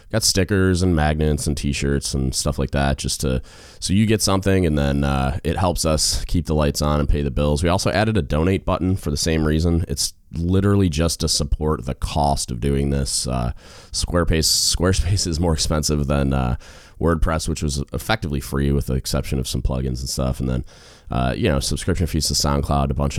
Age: 20-39